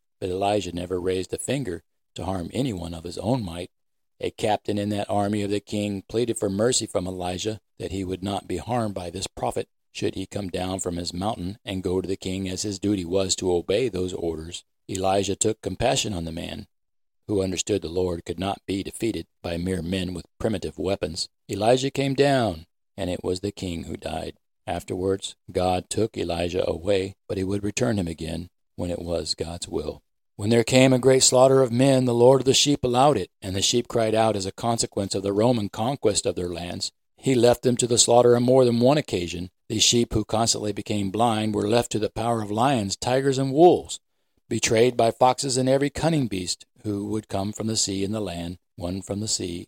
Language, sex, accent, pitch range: English, male, American, 90-115 Hz